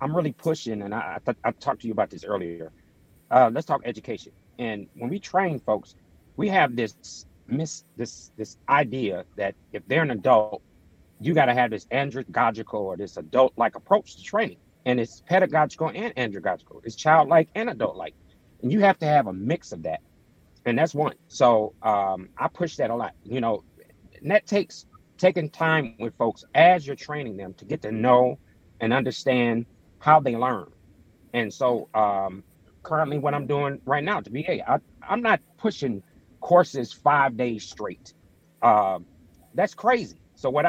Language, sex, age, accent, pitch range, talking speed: English, male, 40-59, American, 110-165 Hz, 175 wpm